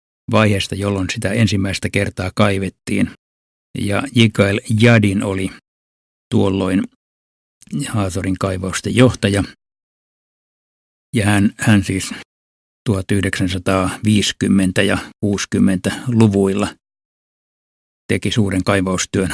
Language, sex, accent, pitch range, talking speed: Finnish, male, native, 95-110 Hz, 75 wpm